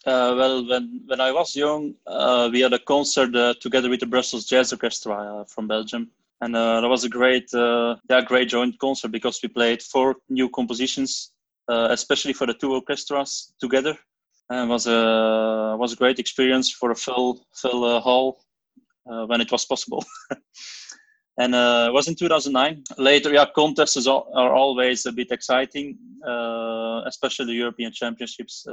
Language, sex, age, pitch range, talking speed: English, male, 20-39, 115-135 Hz, 180 wpm